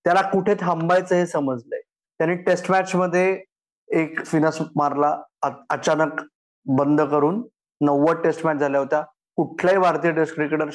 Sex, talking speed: male, 135 wpm